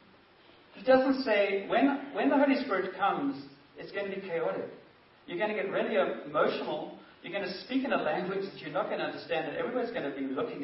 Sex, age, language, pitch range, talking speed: male, 40-59, English, 140-200 Hz, 220 wpm